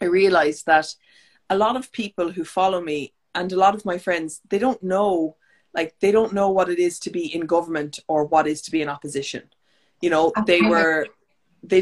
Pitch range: 155-185 Hz